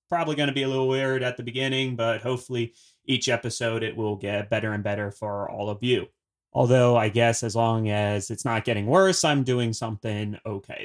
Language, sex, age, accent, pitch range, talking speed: English, male, 30-49, American, 110-135 Hz, 210 wpm